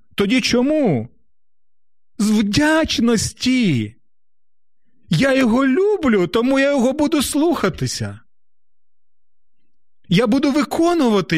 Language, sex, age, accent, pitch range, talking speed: Ukrainian, male, 40-59, native, 135-210 Hz, 80 wpm